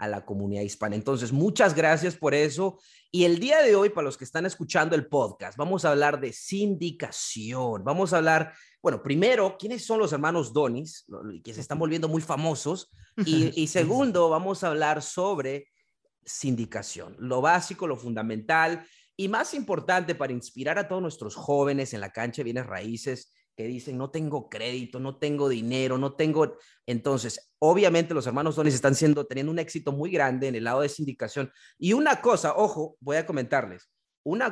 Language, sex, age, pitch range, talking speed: Spanish, male, 30-49, 125-165 Hz, 180 wpm